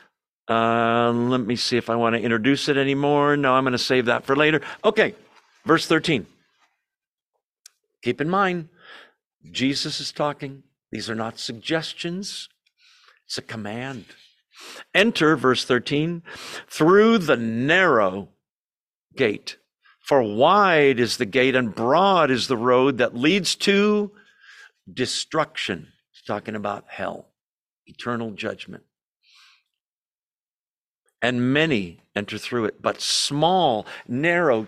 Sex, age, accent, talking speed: male, 50-69, American, 120 wpm